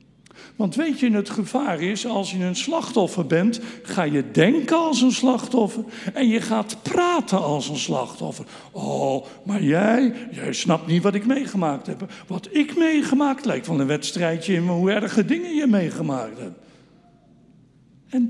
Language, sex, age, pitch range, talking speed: Dutch, male, 60-79, 180-260 Hz, 160 wpm